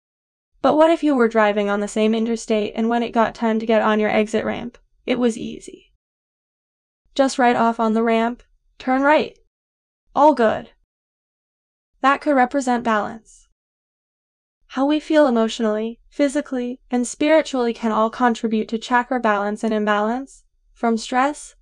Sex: female